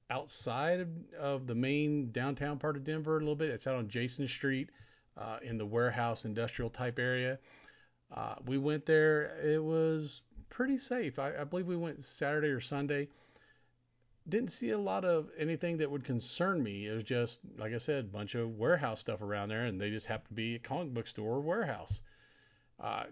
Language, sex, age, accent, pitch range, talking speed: English, male, 40-59, American, 110-150 Hz, 195 wpm